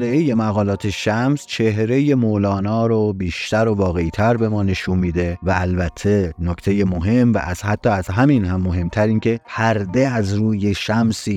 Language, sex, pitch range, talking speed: Persian, male, 95-120 Hz, 150 wpm